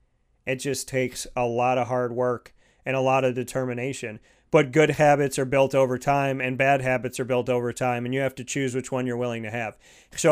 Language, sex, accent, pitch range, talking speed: English, male, American, 125-145 Hz, 225 wpm